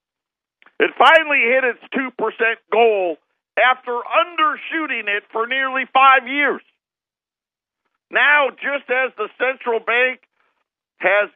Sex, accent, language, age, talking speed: male, American, English, 50-69, 105 wpm